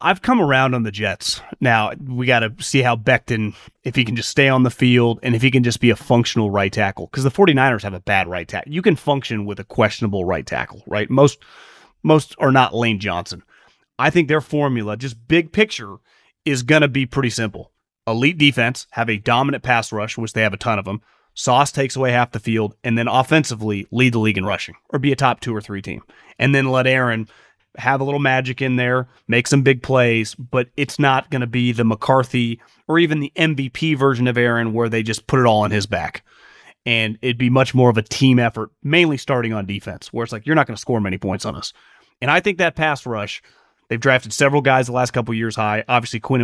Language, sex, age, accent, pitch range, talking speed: English, male, 30-49, American, 110-135 Hz, 235 wpm